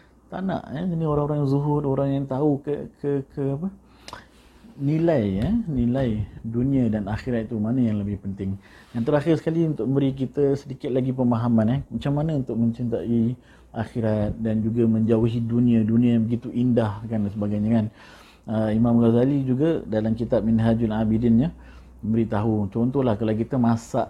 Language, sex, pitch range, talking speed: Malay, male, 105-140 Hz, 160 wpm